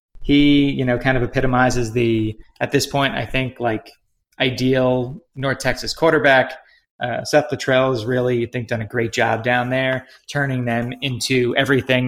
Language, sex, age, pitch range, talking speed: English, male, 20-39, 115-135 Hz, 170 wpm